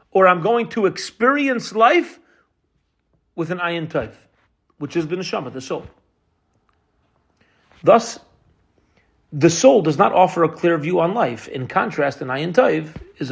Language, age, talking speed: English, 40-59, 150 wpm